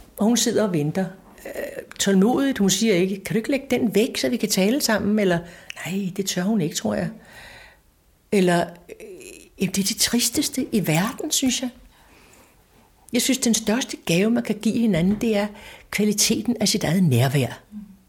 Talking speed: 180 wpm